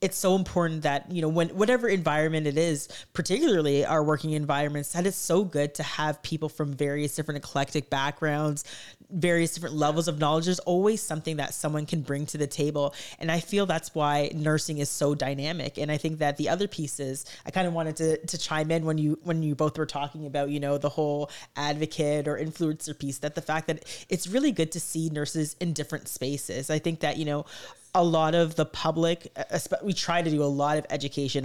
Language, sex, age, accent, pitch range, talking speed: English, female, 30-49, American, 145-165 Hz, 215 wpm